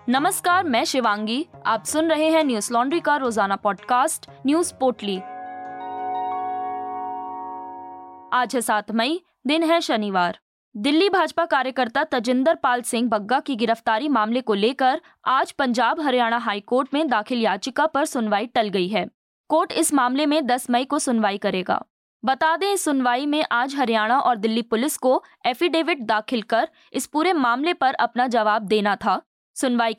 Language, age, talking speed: Hindi, 20-39, 155 wpm